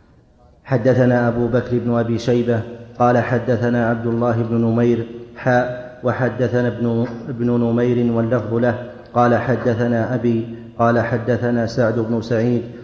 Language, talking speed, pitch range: Arabic, 125 wpm, 120-125 Hz